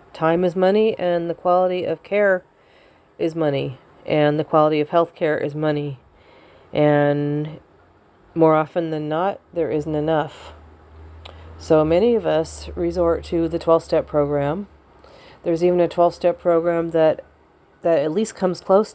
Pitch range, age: 145-165 Hz, 40-59